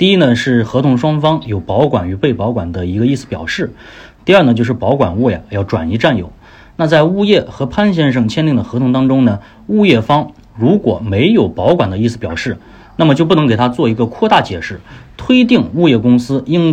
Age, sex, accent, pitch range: 30-49, male, native, 110-155 Hz